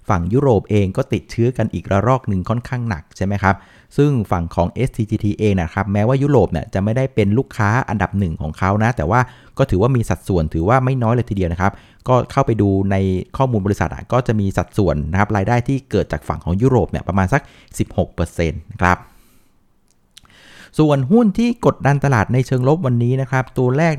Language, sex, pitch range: Thai, male, 95-135 Hz